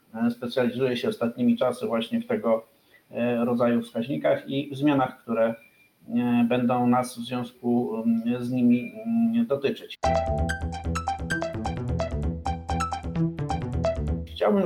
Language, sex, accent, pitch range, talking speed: Polish, male, native, 120-145 Hz, 85 wpm